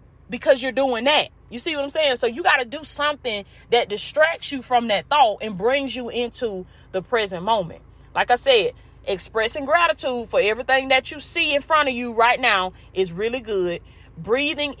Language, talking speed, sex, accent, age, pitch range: English, 195 wpm, female, American, 20-39, 215-290 Hz